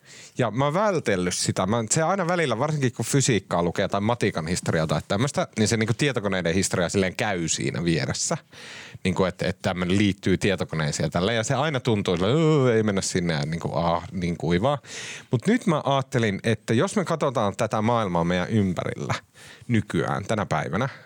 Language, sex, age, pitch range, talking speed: Finnish, male, 30-49, 95-135 Hz, 175 wpm